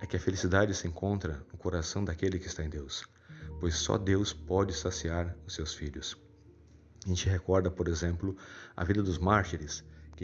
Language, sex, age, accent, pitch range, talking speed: Portuguese, male, 40-59, Brazilian, 85-95 Hz, 180 wpm